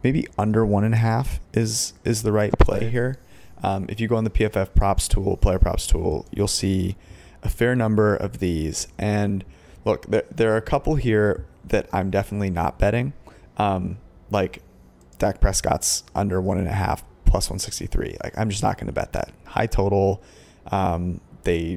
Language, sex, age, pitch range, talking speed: English, male, 30-49, 90-105 Hz, 190 wpm